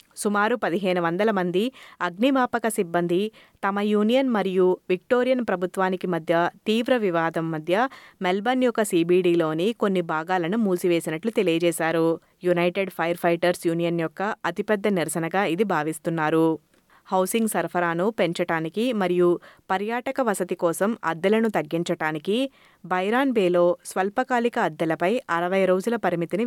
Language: Telugu